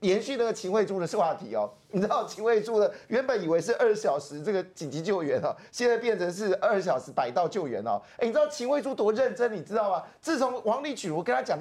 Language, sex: Chinese, male